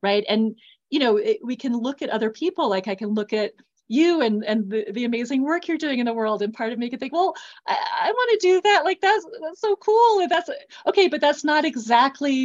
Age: 30-49